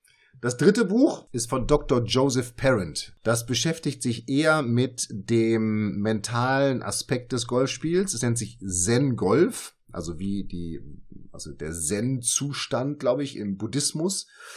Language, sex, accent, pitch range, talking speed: German, male, German, 115-160 Hz, 140 wpm